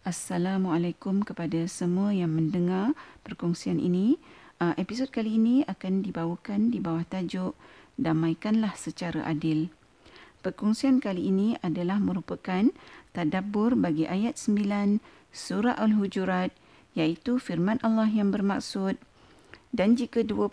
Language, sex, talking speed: Malay, female, 110 wpm